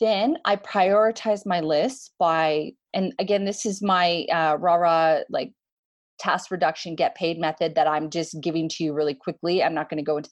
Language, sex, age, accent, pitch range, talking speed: English, female, 30-49, American, 155-215 Hz, 190 wpm